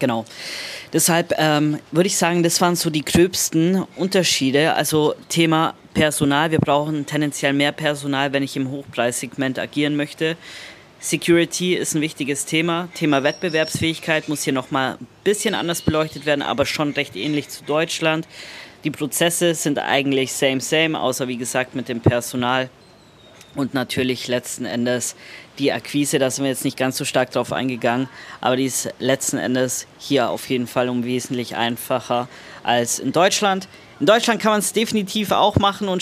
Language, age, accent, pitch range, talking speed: German, 20-39, German, 135-170 Hz, 165 wpm